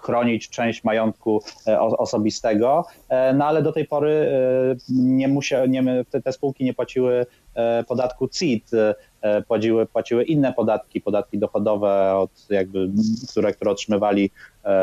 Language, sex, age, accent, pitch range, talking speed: Polish, male, 30-49, native, 105-130 Hz, 115 wpm